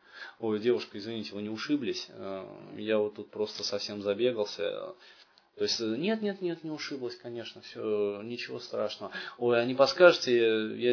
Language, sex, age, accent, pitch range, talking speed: Russian, male, 20-39, native, 110-160 Hz, 155 wpm